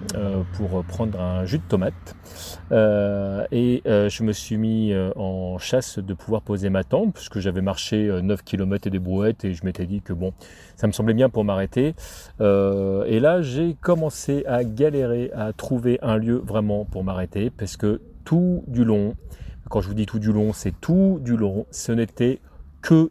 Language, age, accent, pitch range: French, 30-49, French, 100-125 Hz